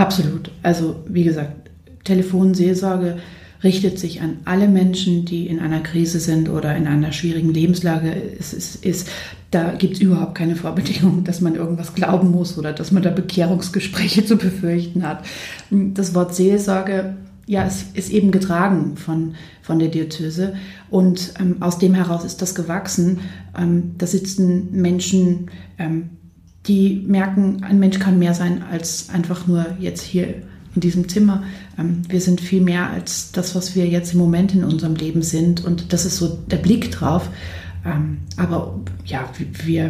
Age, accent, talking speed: 30-49, German, 160 wpm